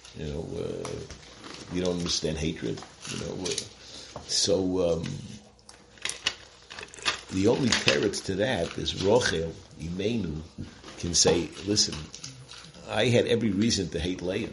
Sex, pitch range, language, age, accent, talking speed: male, 90-110 Hz, English, 60-79, American, 120 wpm